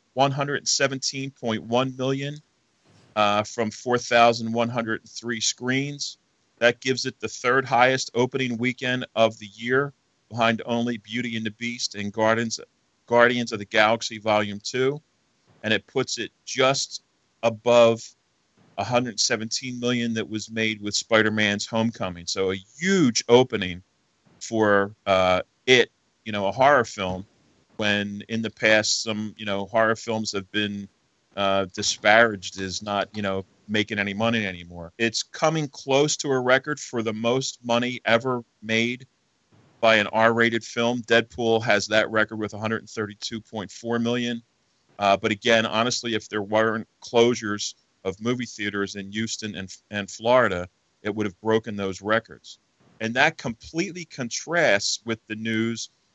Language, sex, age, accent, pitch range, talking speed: English, male, 40-59, American, 105-120 Hz, 140 wpm